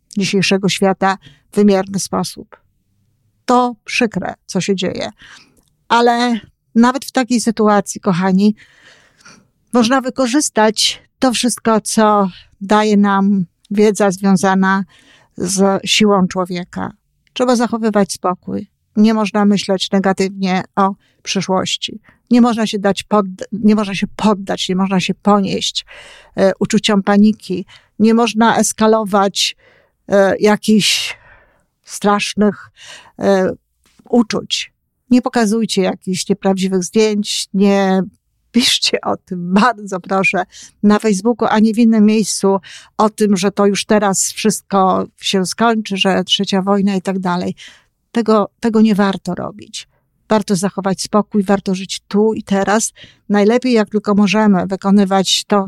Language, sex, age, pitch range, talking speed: Polish, female, 50-69, 190-220 Hz, 115 wpm